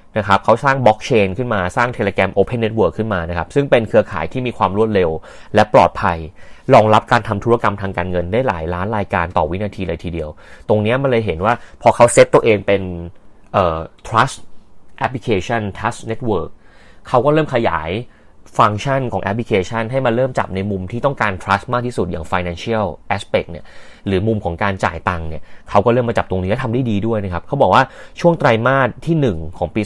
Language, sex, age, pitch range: Thai, male, 30-49, 95-115 Hz